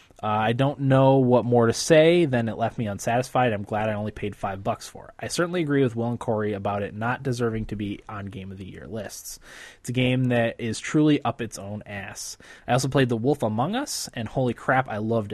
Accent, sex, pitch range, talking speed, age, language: American, male, 110-135 Hz, 245 wpm, 20-39, English